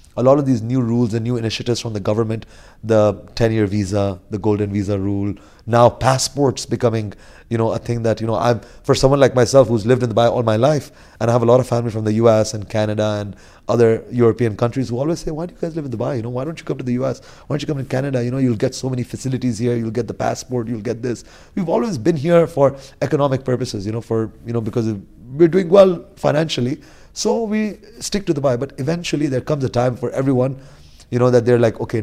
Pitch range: 110-135 Hz